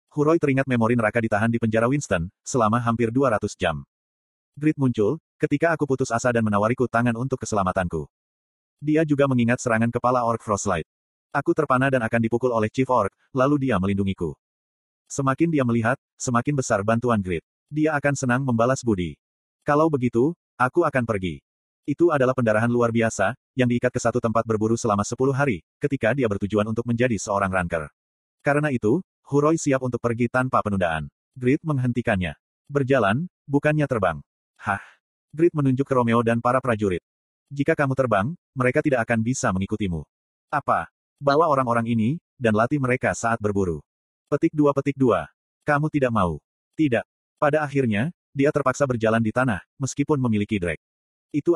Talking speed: 160 wpm